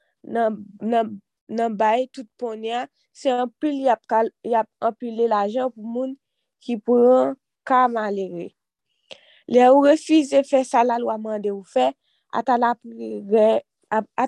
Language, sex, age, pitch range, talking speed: French, female, 20-39, 215-255 Hz, 125 wpm